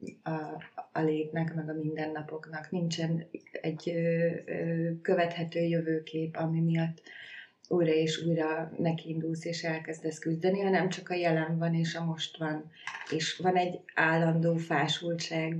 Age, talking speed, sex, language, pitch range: 30-49, 135 wpm, female, Hungarian, 160-175 Hz